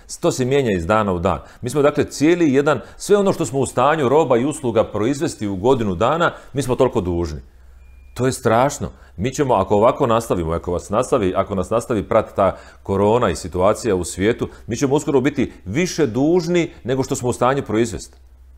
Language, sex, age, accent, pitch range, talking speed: Croatian, male, 40-59, native, 80-130 Hz, 200 wpm